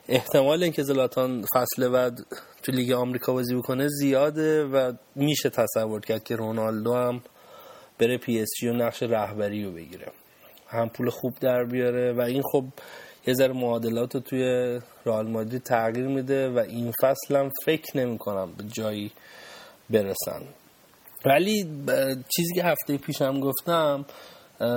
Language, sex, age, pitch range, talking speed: Persian, male, 30-49, 120-140 Hz, 140 wpm